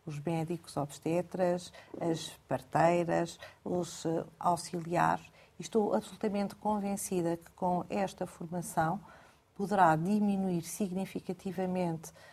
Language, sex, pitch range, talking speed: Portuguese, female, 170-210 Hz, 85 wpm